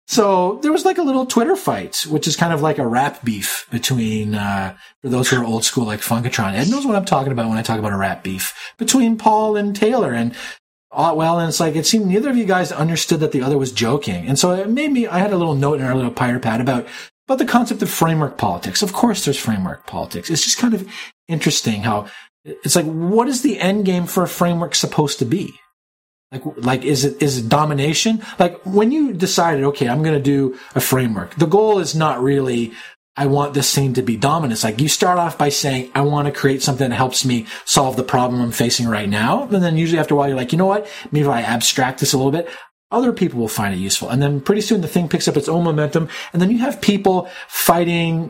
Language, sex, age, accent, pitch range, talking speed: English, male, 30-49, American, 130-190 Hz, 245 wpm